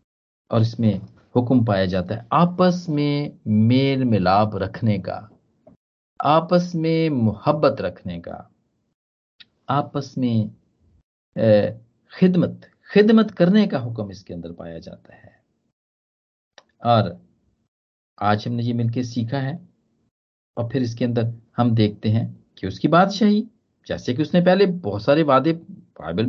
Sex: male